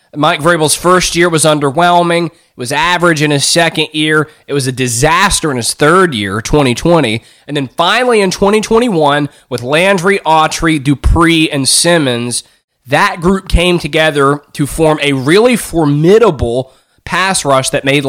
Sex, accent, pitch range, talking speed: male, American, 135-185 Hz, 155 wpm